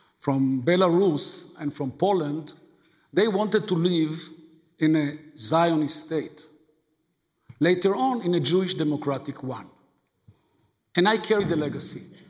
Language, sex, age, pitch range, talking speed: English, male, 50-69, 175-265 Hz, 120 wpm